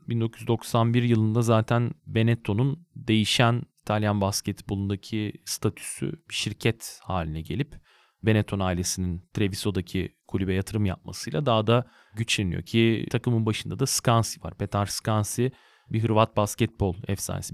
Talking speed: 110 wpm